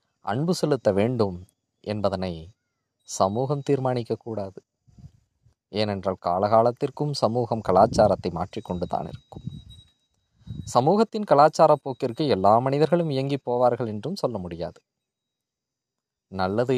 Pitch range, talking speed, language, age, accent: 95-130 Hz, 90 wpm, Tamil, 20-39, native